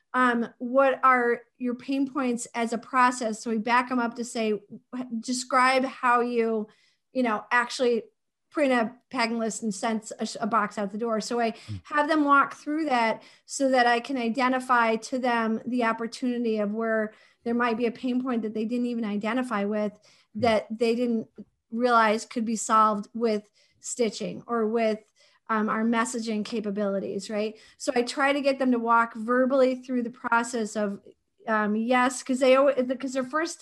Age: 40-59